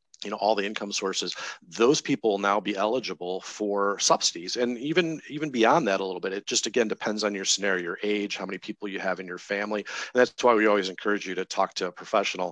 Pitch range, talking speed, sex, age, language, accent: 95-110 Hz, 245 wpm, male, 40-59, English, American